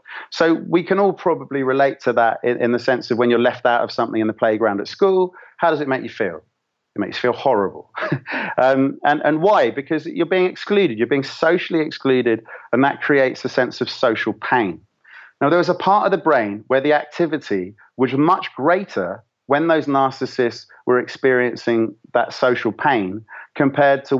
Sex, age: male, 30-49